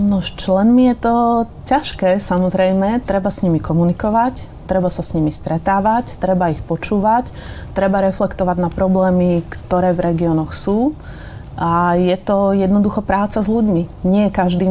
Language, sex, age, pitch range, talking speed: Slovak, female, 30-49, 170-195 Hz, 145 wpm